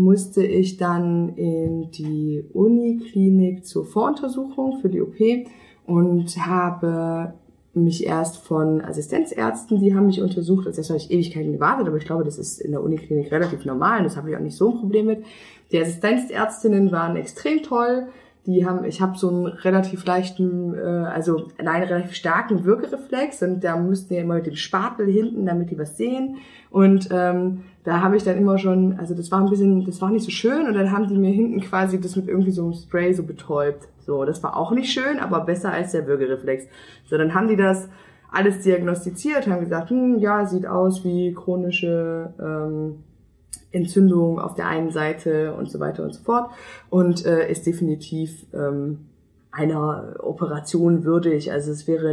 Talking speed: 185 wpm